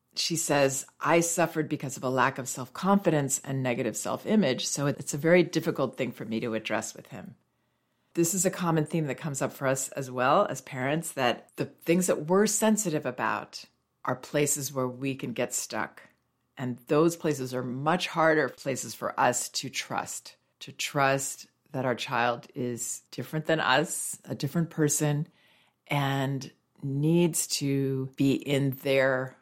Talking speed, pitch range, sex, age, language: 165 wpm, 130-155 Hz, female, 40-59, English